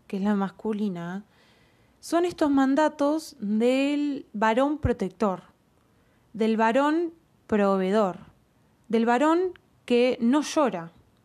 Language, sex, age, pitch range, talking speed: Spanish, female, 20-39, 195-260 Hz, 95 wpm